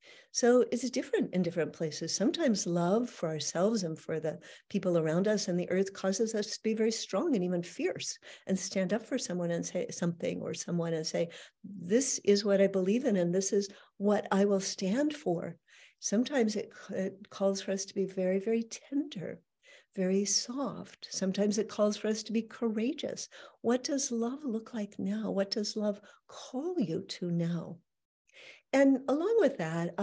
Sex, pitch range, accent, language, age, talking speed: female, 175-225 Hz, American, English, 60-79, 185 wpm